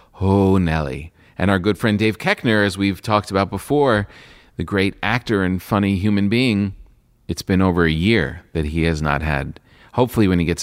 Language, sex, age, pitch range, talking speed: English, male, 40-59, 85-105 Hz, 190 wpm